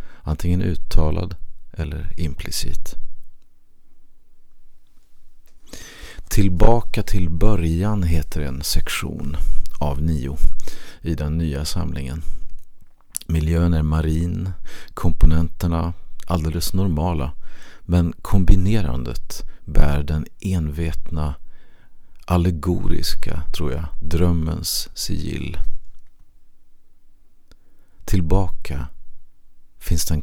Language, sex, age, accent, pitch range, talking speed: Swedish, male, 40-59, native, 75-90 Hz, 70 wpm